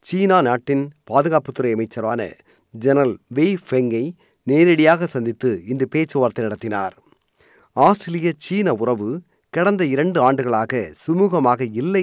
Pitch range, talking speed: 125-175 Hz, 105 wpm